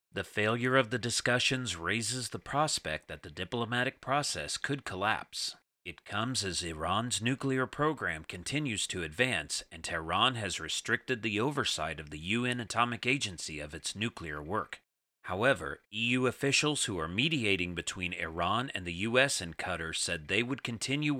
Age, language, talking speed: 40-59, English, 155 wpm